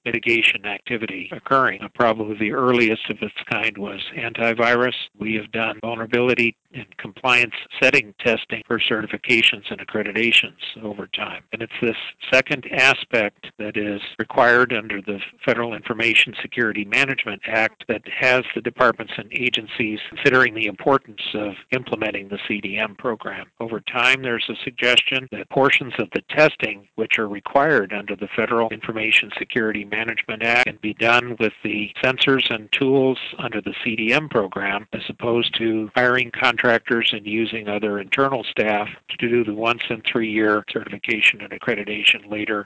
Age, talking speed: 50-69, 145 wpm